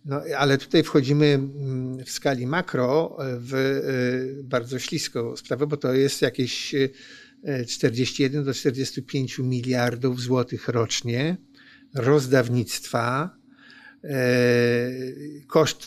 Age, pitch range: 50-69, 125-145 Hz